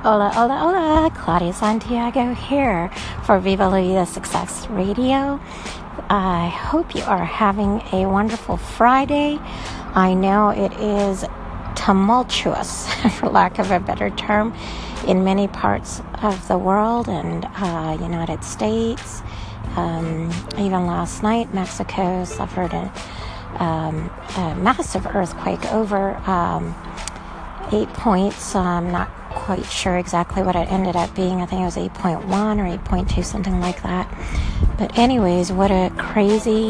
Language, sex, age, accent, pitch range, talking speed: English, female, 50-69, American, 170-205 Hz, 130 wpm